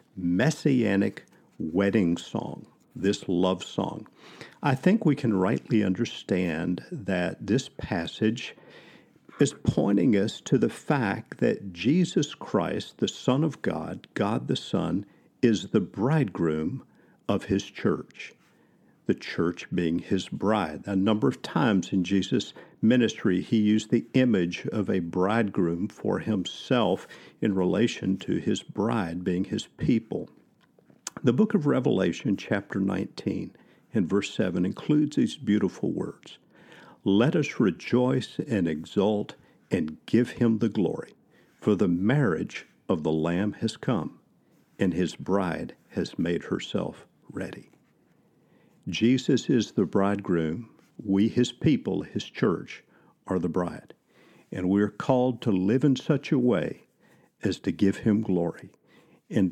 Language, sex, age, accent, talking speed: English, male, 50-69, American, 135 wpm